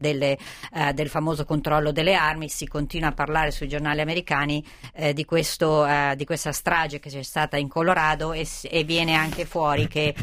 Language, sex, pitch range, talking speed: Italian, female, 140-160 Hz, 190 wpm